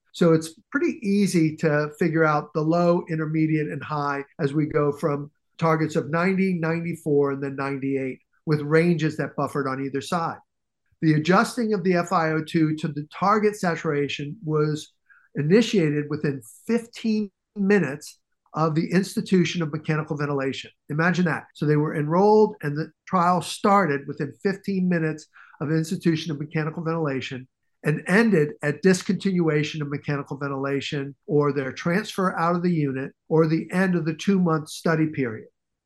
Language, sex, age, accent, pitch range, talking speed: English, male, 50-69, American, 150-185 Hz, 150 wpm